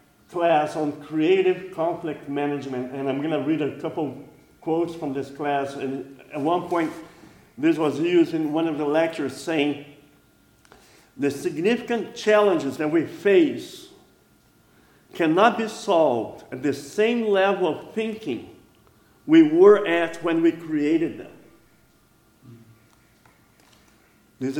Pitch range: 145-205 Hz